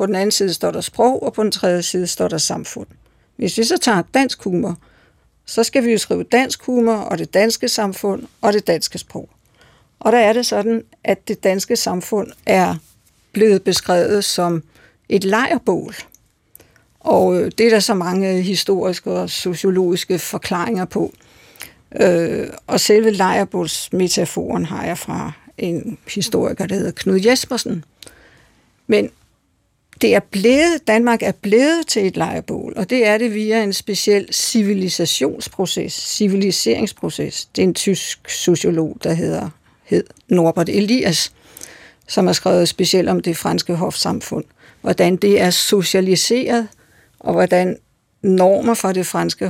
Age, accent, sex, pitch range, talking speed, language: 60-79, native, female, 180-225 Hz, 145 wpm, Danish